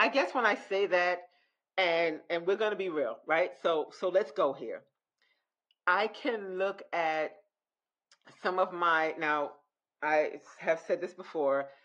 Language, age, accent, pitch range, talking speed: English, 40-59, American, 160-200 Hz, 160 wpm